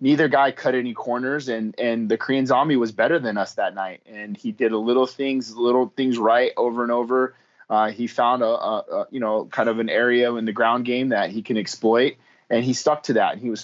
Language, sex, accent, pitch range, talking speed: English, male, American, 115-130 Hz, 245 wpm